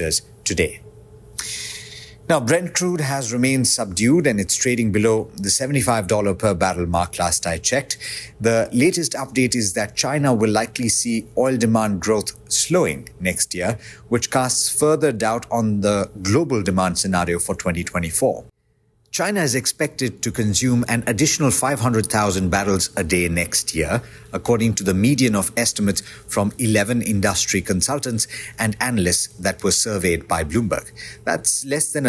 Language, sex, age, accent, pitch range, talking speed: English, male, 50-69, Indian, 100-125 Hz, 145 wpm